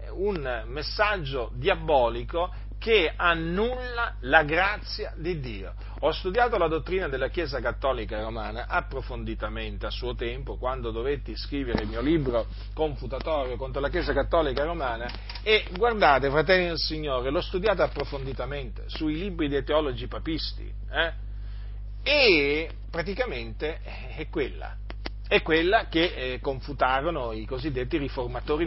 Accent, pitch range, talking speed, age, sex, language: native, 115-170 Hz, 125 wpm, 40-59, male, Italian